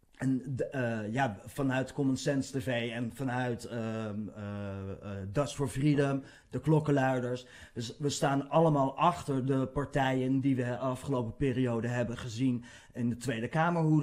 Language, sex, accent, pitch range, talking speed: Dutch, male, Dutch, 115-140 Hz, 150 wpm